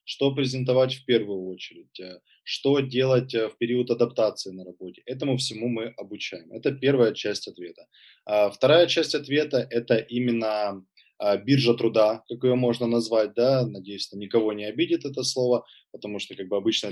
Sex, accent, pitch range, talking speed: male, native, 110-135 Hz, 140 wpm